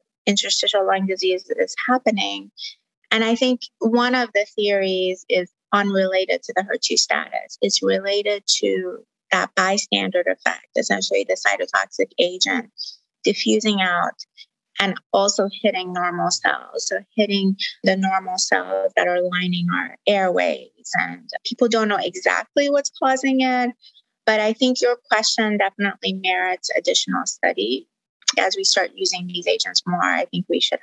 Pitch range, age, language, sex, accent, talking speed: 185-245 Hz, 30-49, English, female, American, 145 wpm